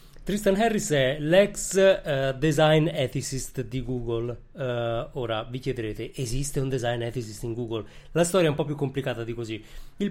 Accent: native